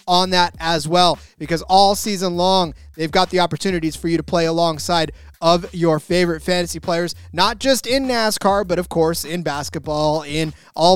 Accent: American